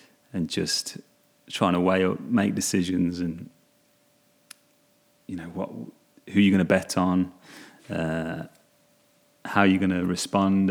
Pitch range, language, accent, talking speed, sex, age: 90-105 Hz, English, British, 135 wpm, male, 30-49